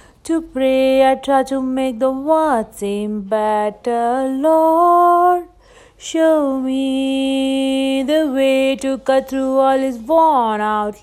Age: 30-49